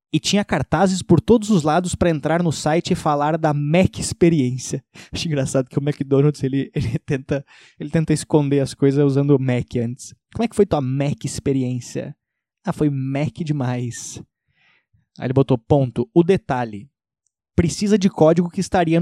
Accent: Brazilian